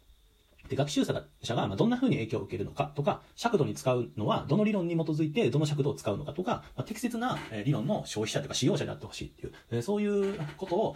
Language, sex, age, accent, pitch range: Japanese, male, 40-59, native, 105-175 Hz